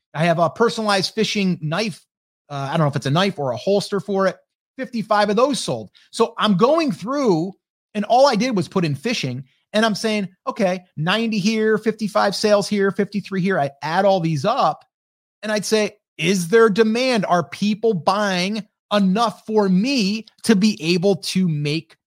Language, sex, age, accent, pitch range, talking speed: English, male, 30-49, American, 150-210 Hz, 185 wpm